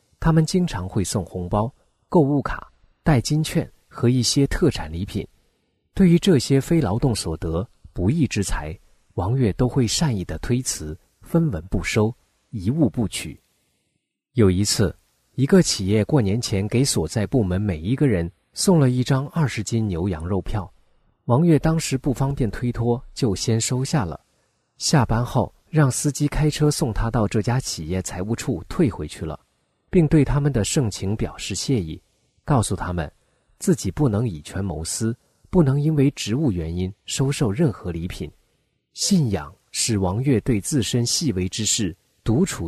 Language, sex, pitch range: Chinese, male, 95-140 Hz